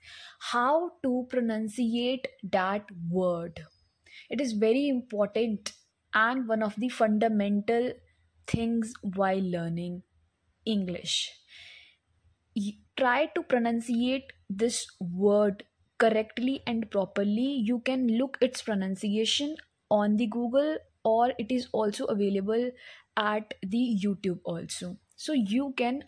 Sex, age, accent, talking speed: female, 20-39, Indian, 105 wpm